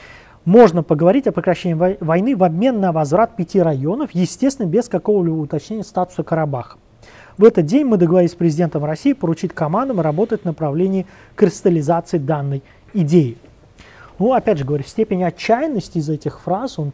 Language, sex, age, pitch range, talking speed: Russian, male, 20-39, 155-210 Hz, 150 wpm